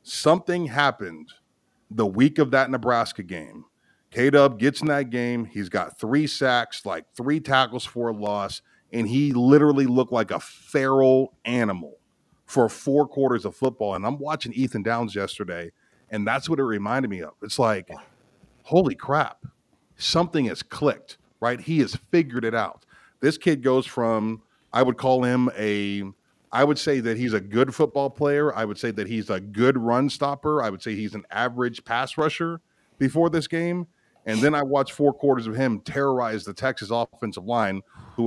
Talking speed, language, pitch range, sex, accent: 180 wpm, English, 110-145 Hz, male, American